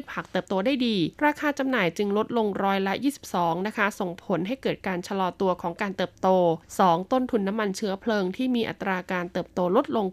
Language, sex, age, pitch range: Thai, female, 20-39, 180-225 Hz